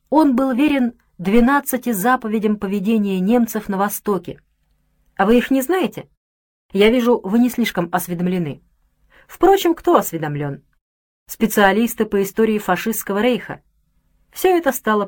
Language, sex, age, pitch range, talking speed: Russian, female, 30-49, 165-245 Hz, 125 wpm